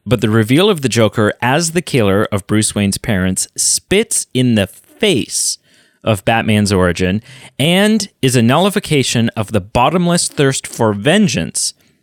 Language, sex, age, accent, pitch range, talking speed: English, male, 30-49, American, 105-145 Hz, 150 wpm